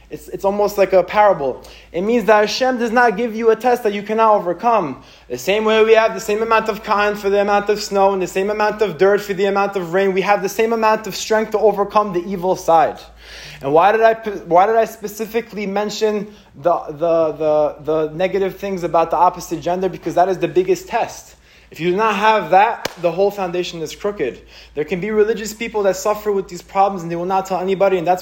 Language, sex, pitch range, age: English, male, 180-220 Hz, 20-39